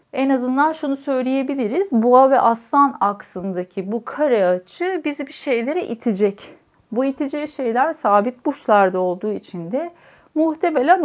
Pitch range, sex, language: 205-280 Hz, female, Turkish